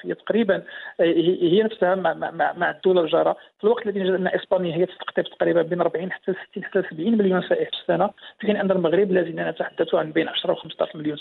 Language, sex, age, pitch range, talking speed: English, male, 50-69, 180-210 Hz, 200 wpm